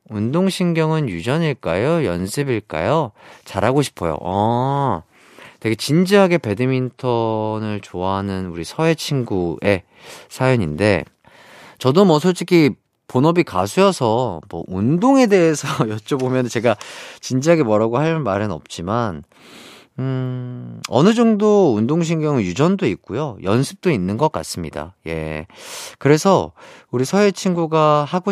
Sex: male